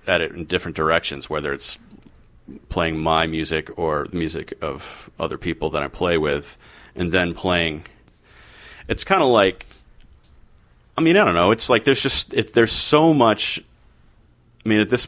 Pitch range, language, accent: 75-90 Hz, English, American